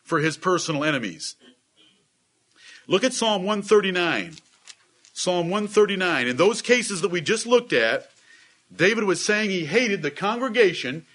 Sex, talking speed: male, 135 wpm